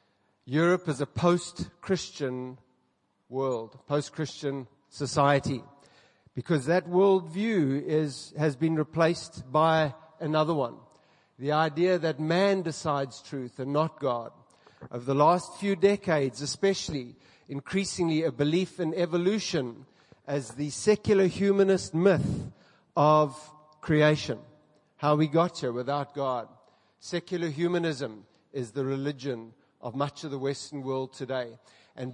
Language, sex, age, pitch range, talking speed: English, male, 50-69, 140-180 Hz, 120 wpm